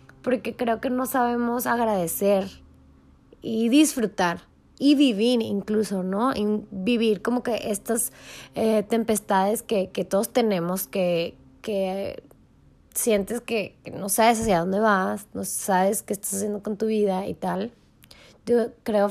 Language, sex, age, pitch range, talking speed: Spanish, female, 20-39, 190-225 Hz, 140 wpm